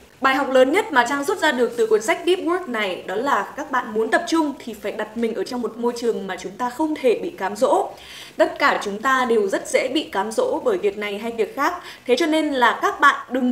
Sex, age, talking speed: female, 20-39, 275 wpm